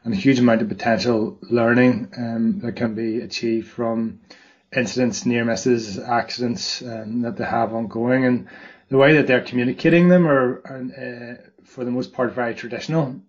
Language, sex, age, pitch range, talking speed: English, male, 20-39, 115-130 Hz, 170 wpm